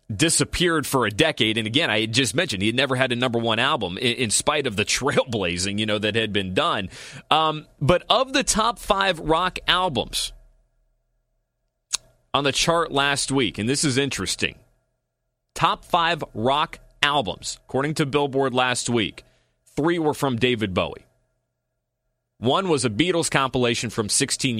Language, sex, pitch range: English, male, 115-140 Hz